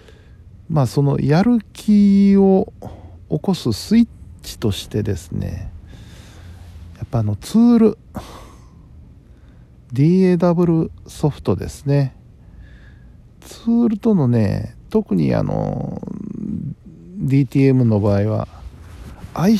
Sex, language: male, Japanese